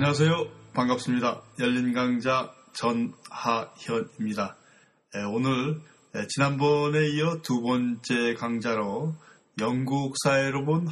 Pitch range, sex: 125-165 Hz, male